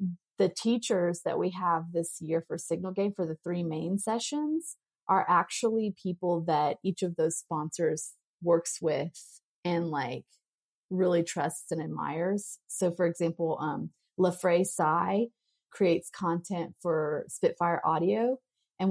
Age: 30-49